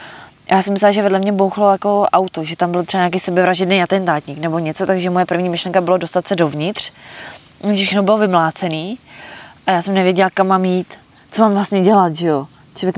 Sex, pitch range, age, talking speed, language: female, 160-195 Hz, 20-39, 210 wpm, Czech